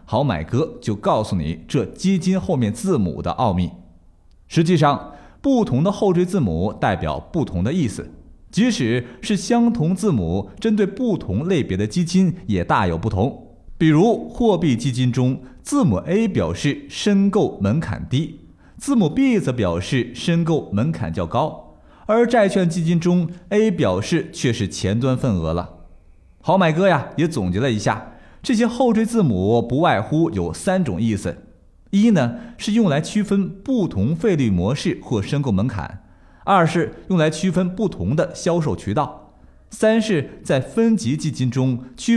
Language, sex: Chinese, male